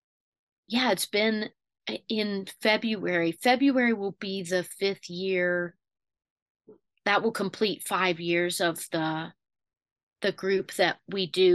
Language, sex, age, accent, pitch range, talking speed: English, female, 30-49, American, 180-220 Hz, 120 wpm